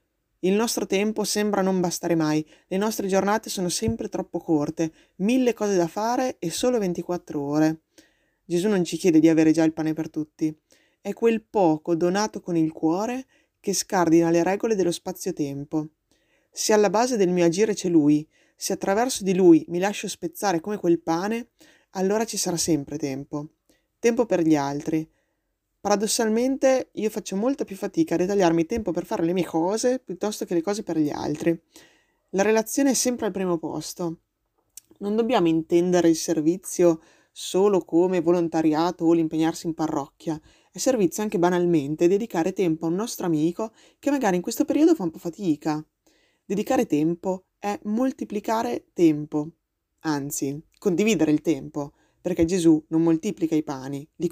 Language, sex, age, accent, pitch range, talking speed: Italian, female, 20-39, native, 160-210 Hz, 165 wpm